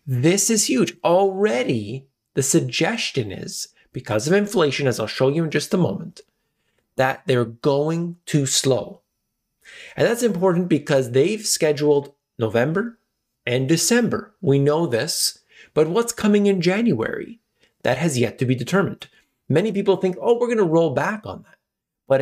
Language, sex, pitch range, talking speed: English, male, 130-185 Hz, 155 wpm